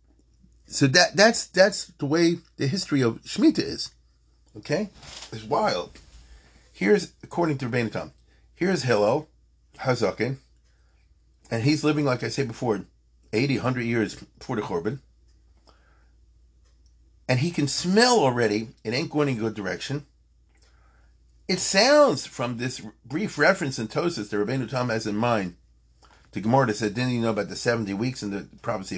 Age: 40-59